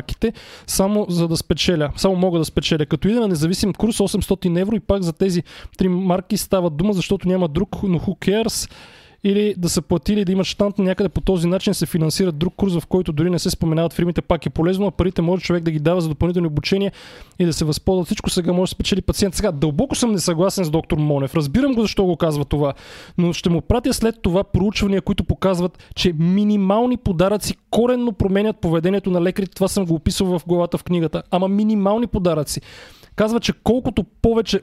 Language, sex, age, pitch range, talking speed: Bulgarian, male, 20-39, 170-205 Hz, 205 wpm